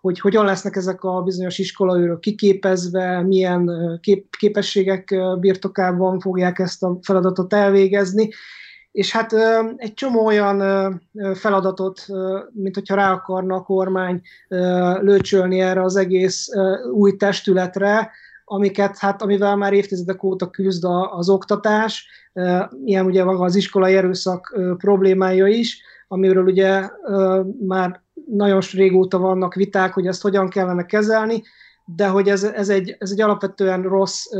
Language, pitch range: Hungarian, 185-200 Hz